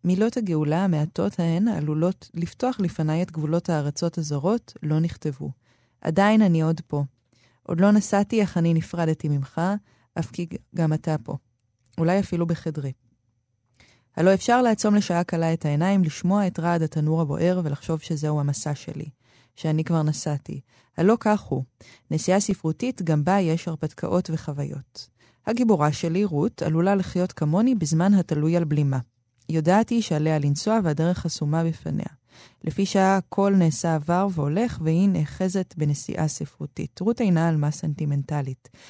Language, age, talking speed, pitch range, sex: Hebrew, 20-39, 145 wpm, 150-195 Hz, female